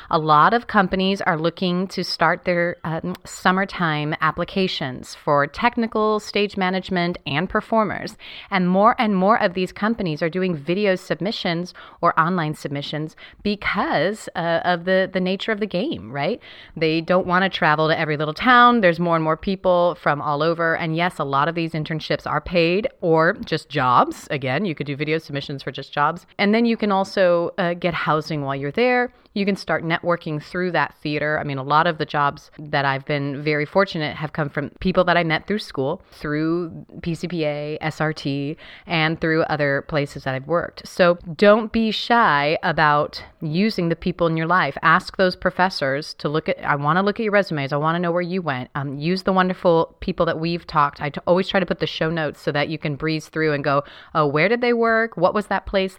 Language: English